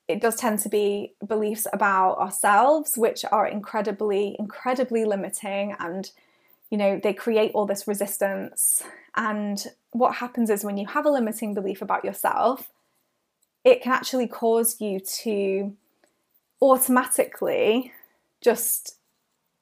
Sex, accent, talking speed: female, British, 125 wpm